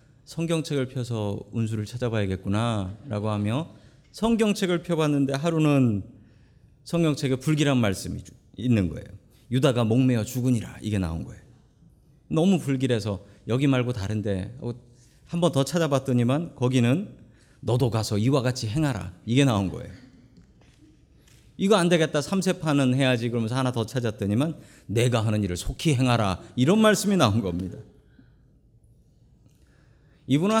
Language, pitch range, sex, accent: Korean, 115-165 Hz, male, native